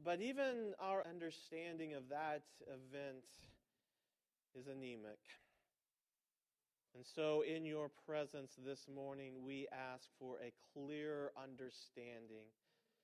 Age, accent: 40-59, American